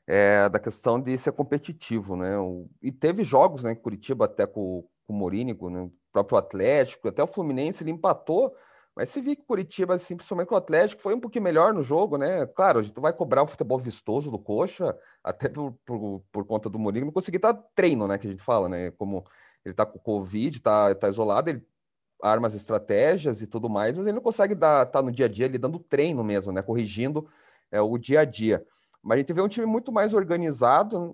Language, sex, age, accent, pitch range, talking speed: Portuguese, male, 30-49, Brazilian, 110-185 Hz, 225 wpm